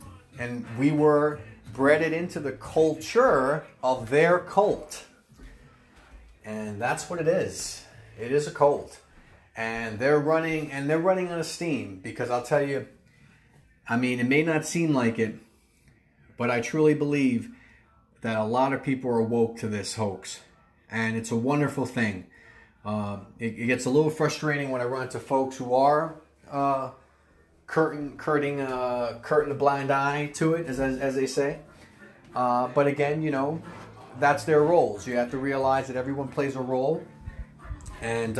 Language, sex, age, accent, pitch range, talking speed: English, male, 30-49, American, 105-140 Hz, 165 wpm